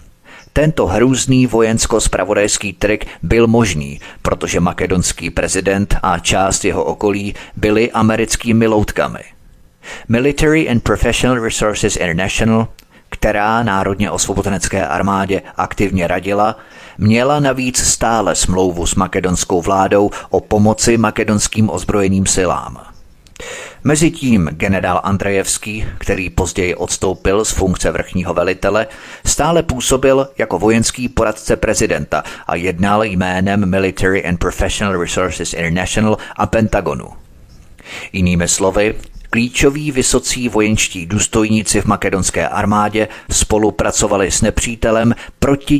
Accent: native